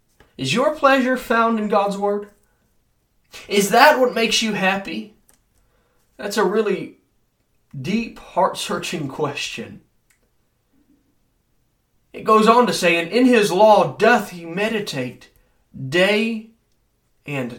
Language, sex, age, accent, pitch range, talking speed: English, male, 20-39, American, 130-205 Hz, 115 wpm